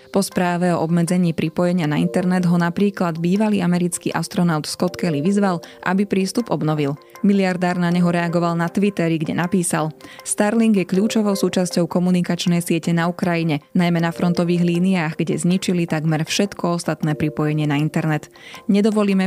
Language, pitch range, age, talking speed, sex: Slovak, 160-190 Hz, 20-39, 145 wpm, female